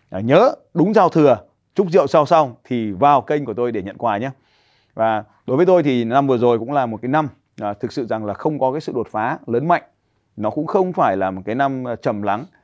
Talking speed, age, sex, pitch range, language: 255 wpm, 20-39, male, 110-140 Hz, Vietnamese